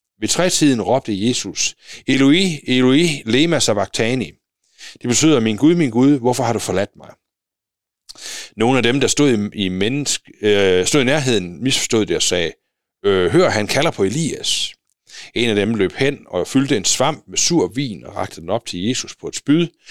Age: 60-79